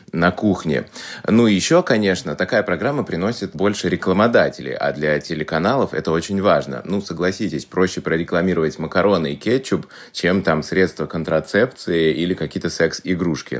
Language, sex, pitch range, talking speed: Russian, male, 75-95 Hz, 135 wpm